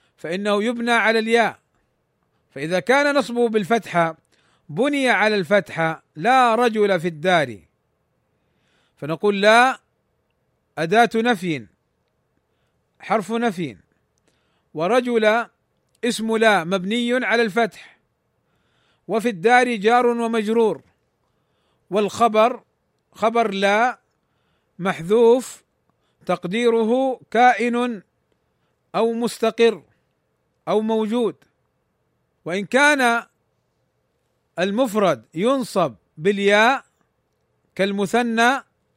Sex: male